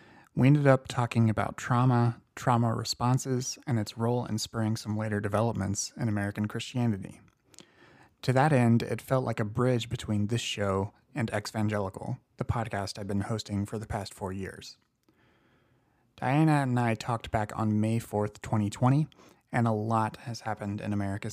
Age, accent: 30-49, American